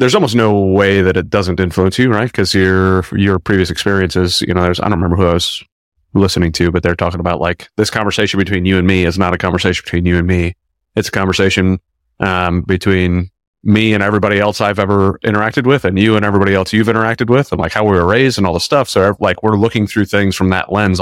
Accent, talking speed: American, 245 wpm